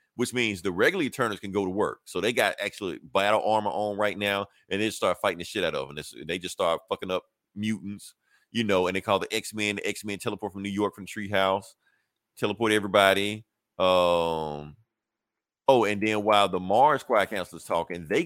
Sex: male